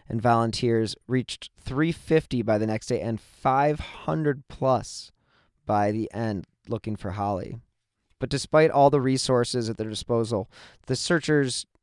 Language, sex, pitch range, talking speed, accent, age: English, male, 100-120 Hz, 135 wpm, American, 20-39